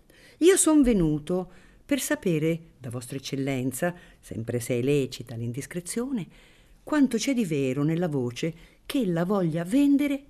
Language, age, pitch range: Italian, 50-69, 135-225 Hz